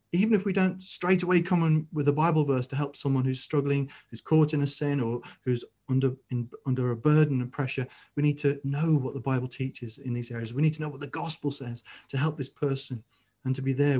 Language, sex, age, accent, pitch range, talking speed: English, male, 30-49, British, 120-150 Hz, 250 wpm